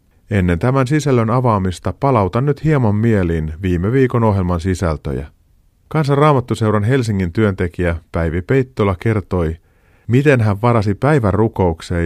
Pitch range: 90-120 Hz